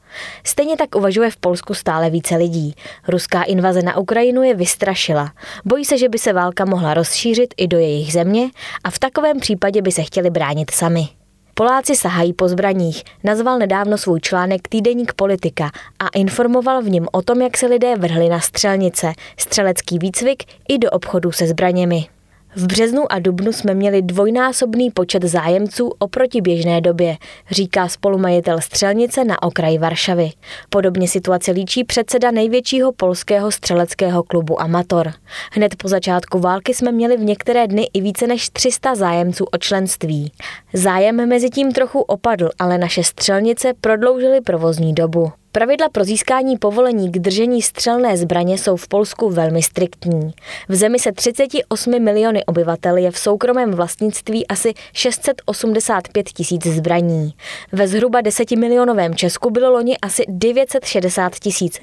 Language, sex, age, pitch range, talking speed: Czech, female, 20-39, 175-235 Hz, 150 wpm